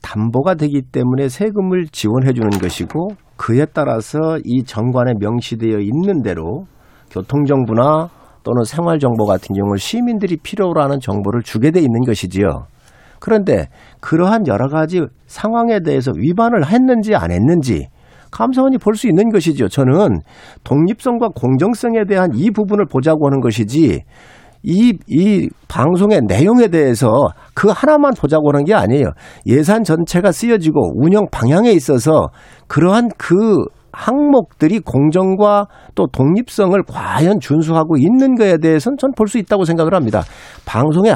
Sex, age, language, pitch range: male, 50-69, Korean, 135-215 Hz